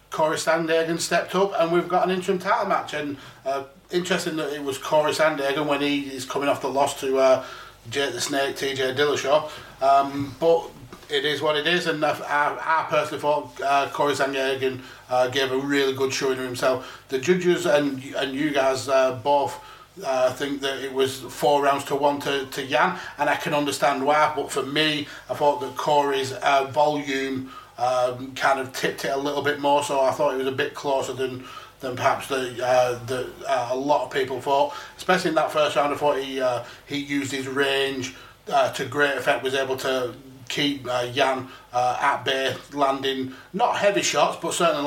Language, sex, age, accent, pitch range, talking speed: English, male, 30-49, British, 130-145 Hz, 205 wpm